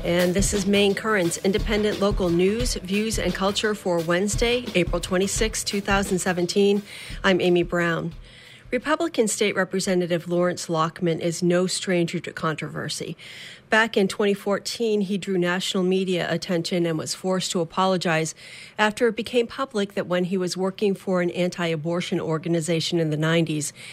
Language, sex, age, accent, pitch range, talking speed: English, female, 40-59, American, 170-200 Hz, 145 wpm